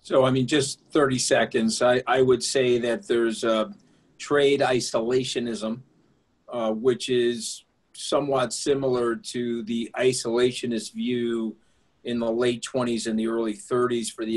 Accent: American